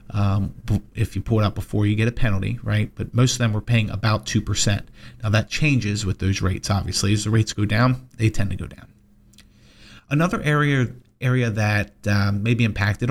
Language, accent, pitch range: English, American, 105-140 Hz